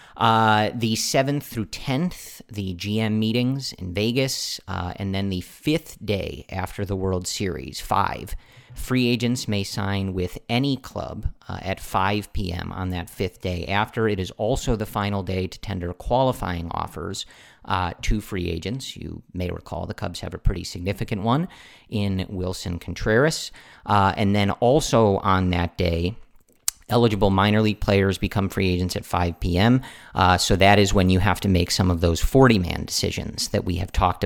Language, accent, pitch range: English, American, 90-110 Hz